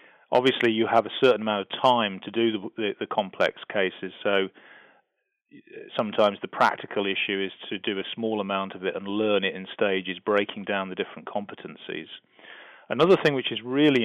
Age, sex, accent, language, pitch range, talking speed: 30-49, male, British, English, 100-115 Hz, 185 wpm